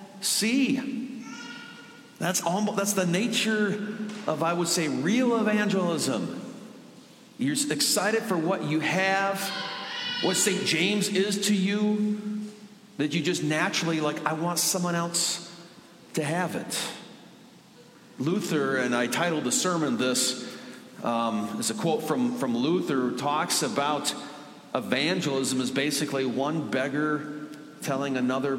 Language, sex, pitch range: English, male, 155-220 Hz